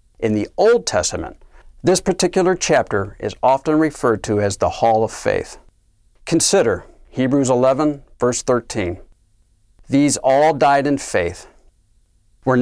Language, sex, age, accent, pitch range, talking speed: English, male, 50-69, American, 110-155 Hz, 130 wpm